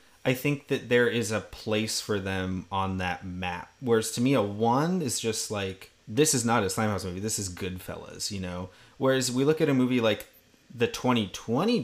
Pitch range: 95-125 Hz